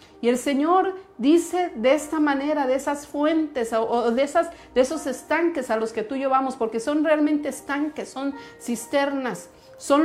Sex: female